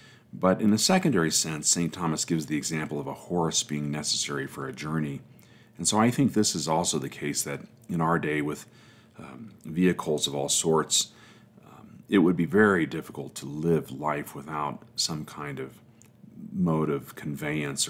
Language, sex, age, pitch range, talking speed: English, male, 40-59, 75-95 Hz, 180 wpm